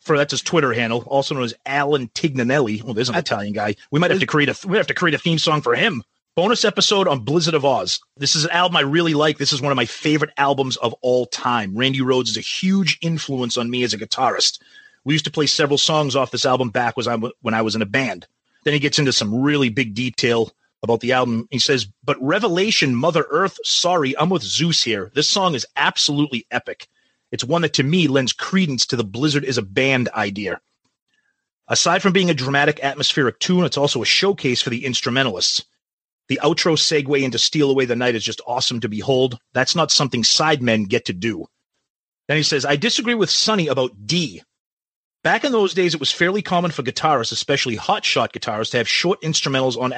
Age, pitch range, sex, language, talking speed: 30-49, 120-160 Hz, male, English, 215 wpm